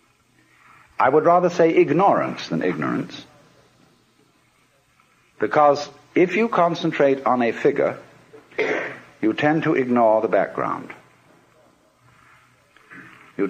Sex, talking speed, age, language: male, 95 wpm, 60-79, English